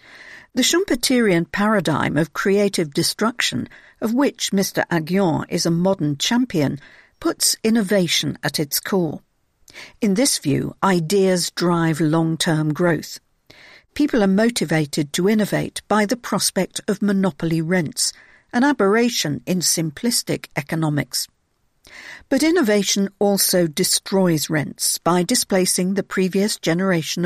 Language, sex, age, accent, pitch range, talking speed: English, female, 50-69, British, 160-215 Hz, 115 wpm